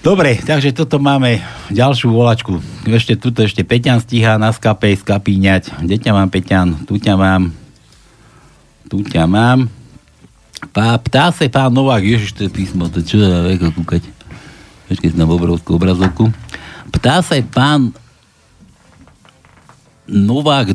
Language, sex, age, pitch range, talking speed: Slovak, male, 60-79, 115-175 Hz, 125 wpm